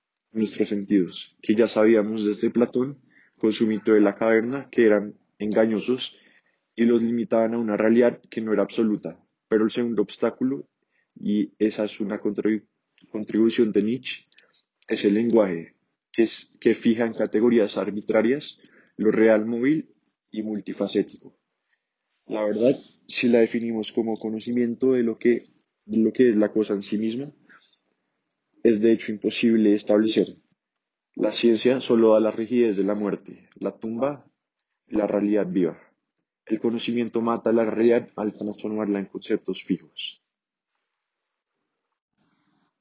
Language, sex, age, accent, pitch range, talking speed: Spanish, male, 20-39, Colombian, 105-115 Hz, 145 wpm